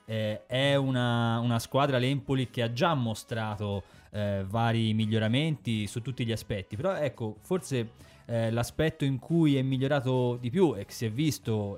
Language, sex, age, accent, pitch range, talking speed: Italian, male, 30-49, native, 110-130 Hz, 170 wpm